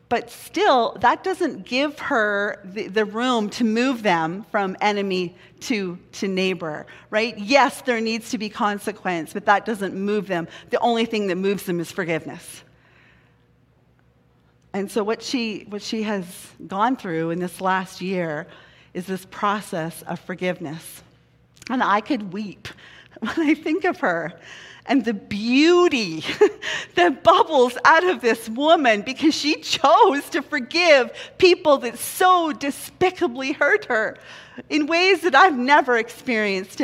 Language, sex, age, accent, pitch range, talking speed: English, female, 40-59, American, 185-265 Hz, 145 wpm